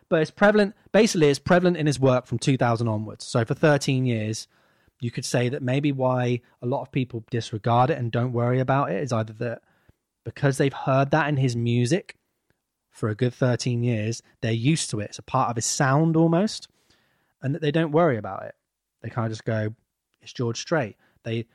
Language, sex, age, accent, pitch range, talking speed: English, male, 20-39, British, 115-140 Hz, 210 wpm